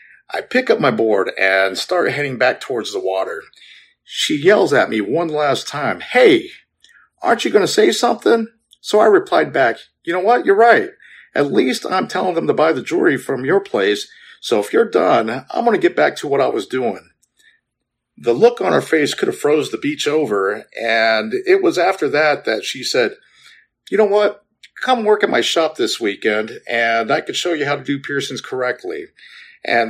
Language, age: English, 50-69